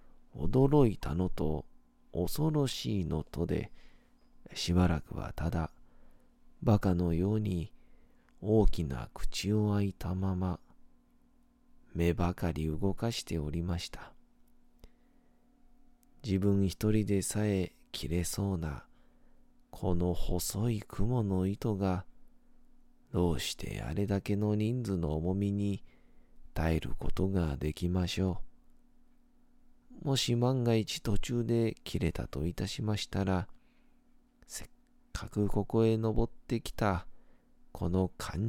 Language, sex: Japanese, male